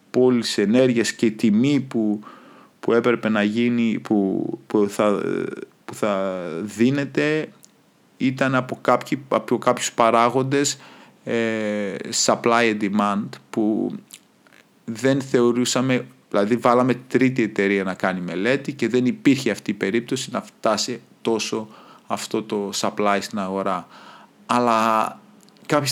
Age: 30-49